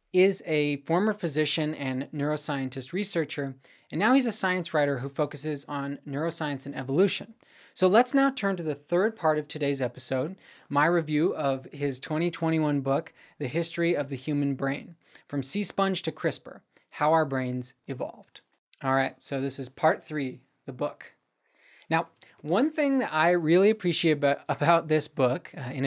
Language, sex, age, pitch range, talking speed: English, male, 20-39, 140-175 Hz, 165 wpm